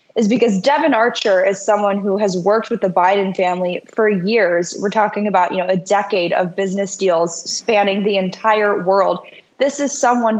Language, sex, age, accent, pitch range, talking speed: English, female, 10-29, American, 185-220 Hz, 185 wpm